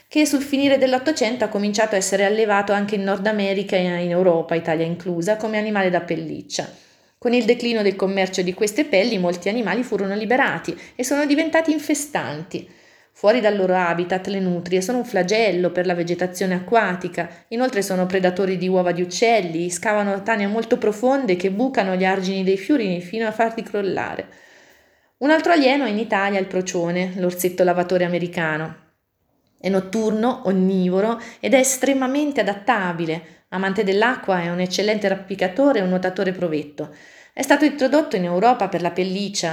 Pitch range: 180-230 Hz